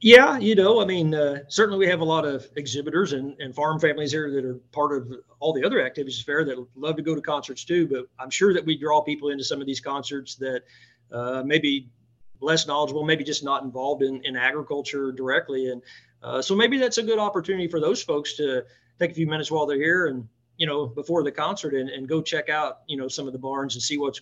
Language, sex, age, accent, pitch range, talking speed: English, male, 40-59, American, 130-150 Hz, 245 wpm